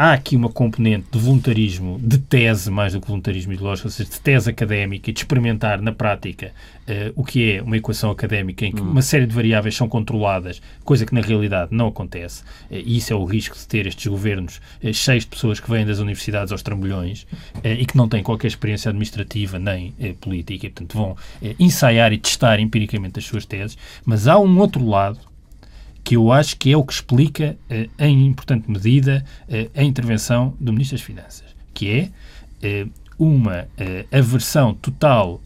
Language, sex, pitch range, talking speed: Portuguese, male, 105-135 Hz, 190 wpm